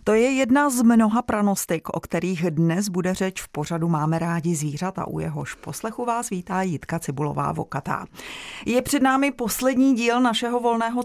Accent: native